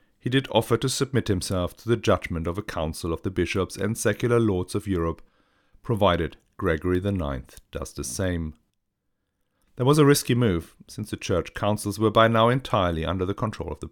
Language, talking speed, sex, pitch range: English, 190 wpm, male, 90-115 Hz